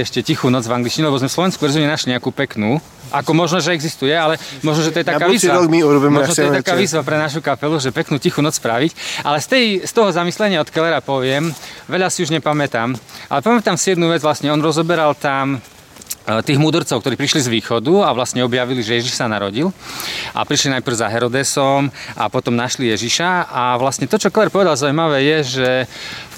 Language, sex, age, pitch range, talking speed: Slovak, male, 30-49, 125-155 Hz, 200 wpm